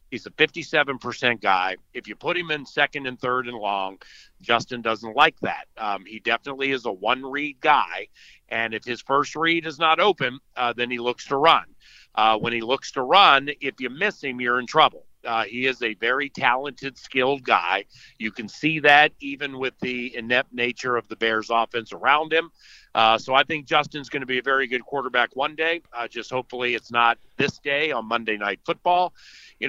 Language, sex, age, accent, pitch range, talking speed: English, male, 50-69, American, 120-150 Hz, 205 wpm